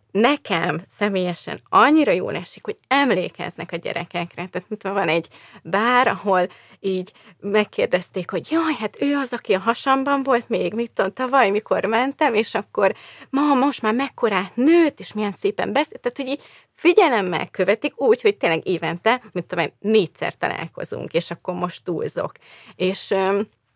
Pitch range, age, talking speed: 175-235 Hz, 20-39, 155 wpm